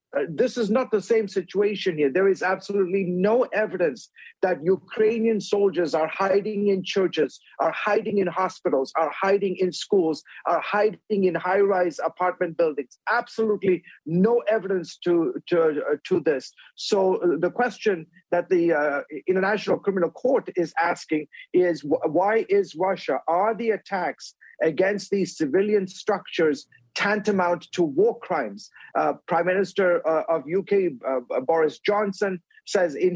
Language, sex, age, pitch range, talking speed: English, male, 50-69, 170-210 Hz, 140 wpm